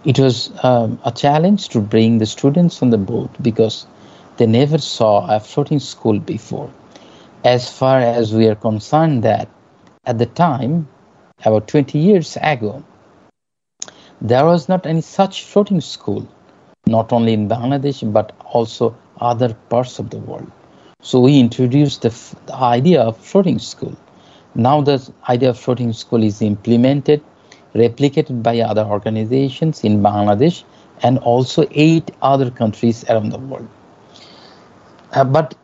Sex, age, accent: male, 50-69, Indian